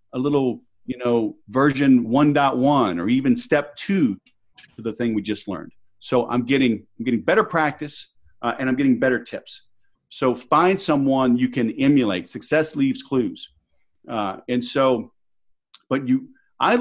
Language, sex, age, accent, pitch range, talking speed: English, male, 40-59, American, 120-165 Hz, 155 wpm